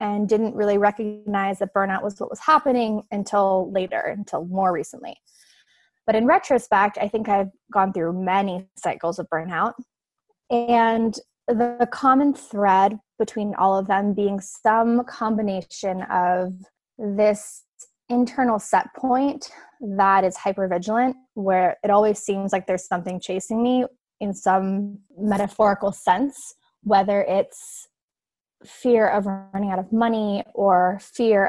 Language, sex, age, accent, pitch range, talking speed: English, female, 20-39, American, 190-235 Hz, 130 wpm